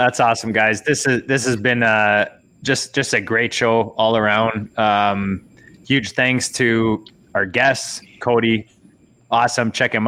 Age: 20-39